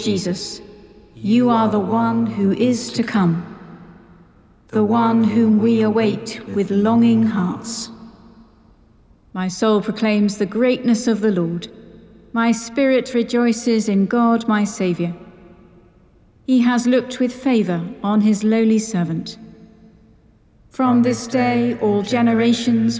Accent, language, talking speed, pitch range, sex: British, English, 120 wpm, 195-230 Hz, female